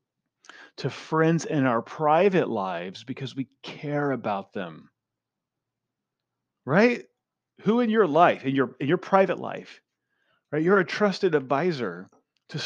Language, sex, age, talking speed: English, male, 30-49, 130 wpm